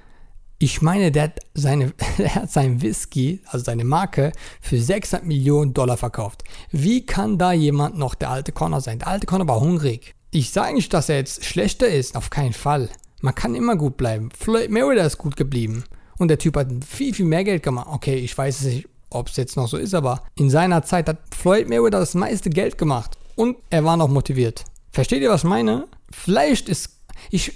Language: German